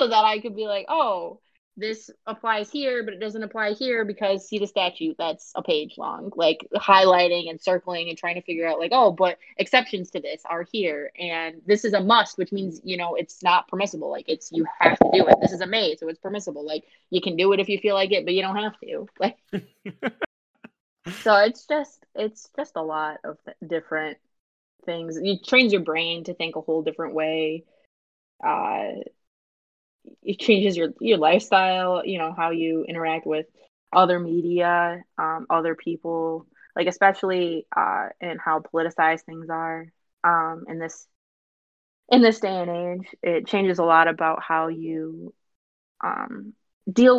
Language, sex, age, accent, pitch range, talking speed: English, female, 20-39, American, 160-205 Hz, 180 wpm